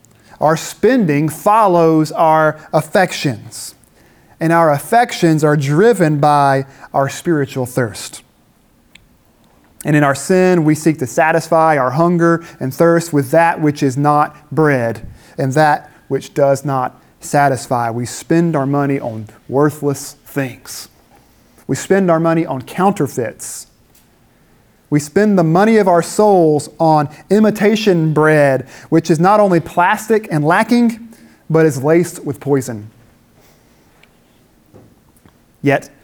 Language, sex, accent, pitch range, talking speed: English, male, American, 135-170 Hz, 125 wpm